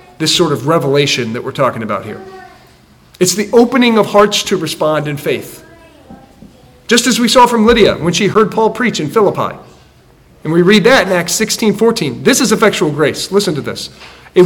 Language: English